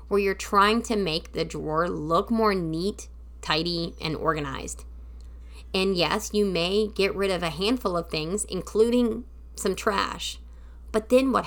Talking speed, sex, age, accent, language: 155 wpm, female, 30-49, American, English